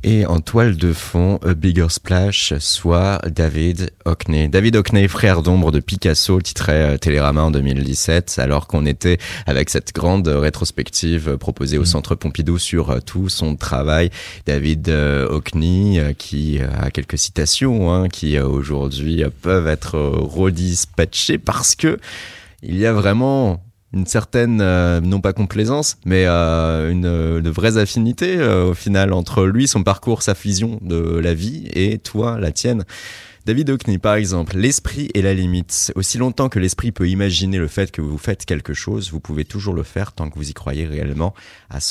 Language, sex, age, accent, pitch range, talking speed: French, male, 30-49, French, 80-105 Hz, 165 wpm